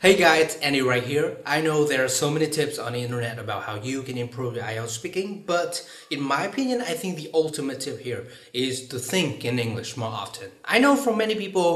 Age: 30-49